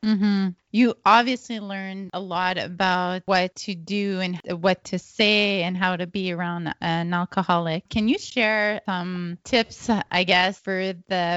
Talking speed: 165 wpm